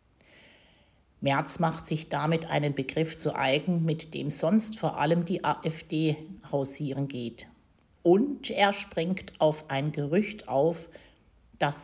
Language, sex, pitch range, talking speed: German, female, 145-185 Hz, 125 wpm